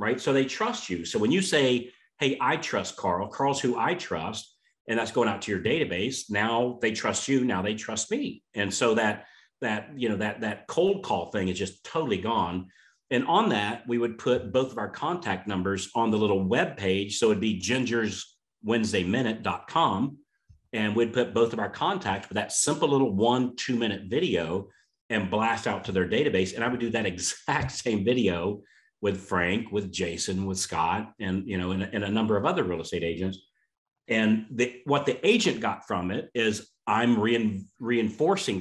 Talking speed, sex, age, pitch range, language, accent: 195 wpm, male, 40-59, 95-120 Hz, English, American